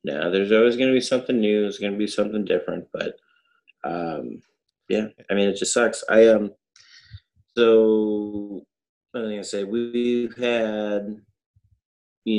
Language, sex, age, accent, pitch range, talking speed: English, male, 30-49, American, 100-115 Hz, 170 wpm